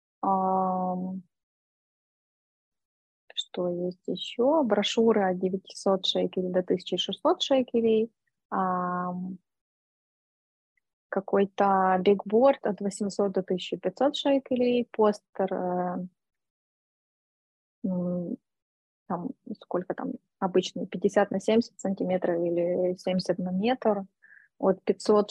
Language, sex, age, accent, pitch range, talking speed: Russian, female, 20-39, native, 185-220 Hz, 75 wpm